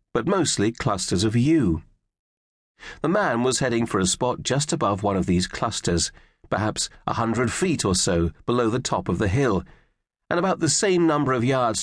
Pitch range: 95-140 Hz